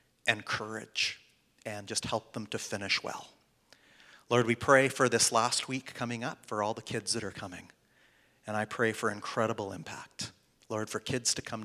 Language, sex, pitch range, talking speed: English, male, 105-125 Hz, 185 wpm